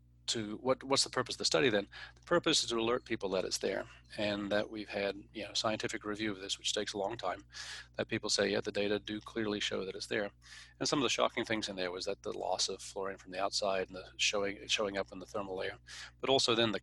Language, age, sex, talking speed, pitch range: English, 40-59, male, 265 wpm, 100-115 Hz